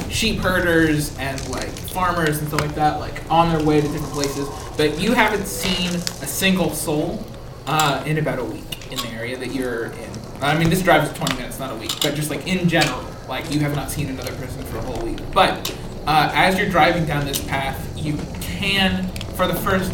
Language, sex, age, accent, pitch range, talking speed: English, male, 20-39, American, 135-185 Hz, 220 wpm